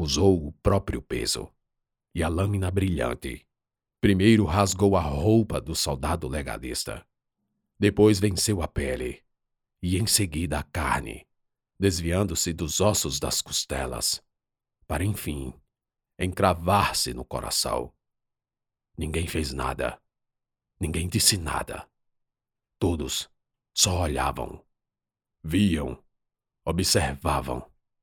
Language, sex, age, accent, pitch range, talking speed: Portuguese, male, 50-69, Brazilian, 75-100 Hz, 95 wpm